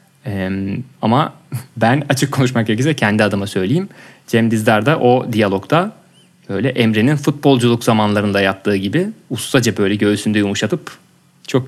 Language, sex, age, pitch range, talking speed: Turkish, male, 30-49, 105-130 Hz, 125 wpm